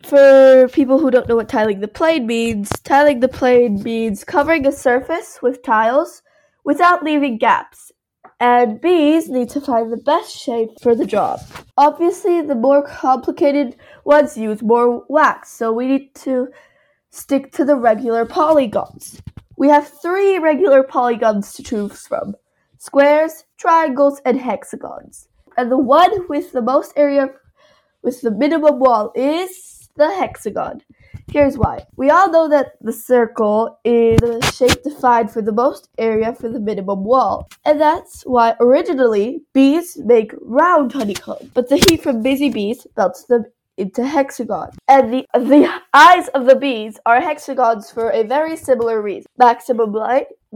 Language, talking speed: English, 155 wpm